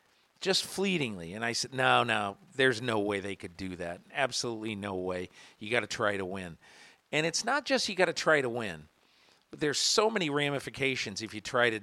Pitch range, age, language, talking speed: 105-130 Hz, 50-69, English, 215 wpm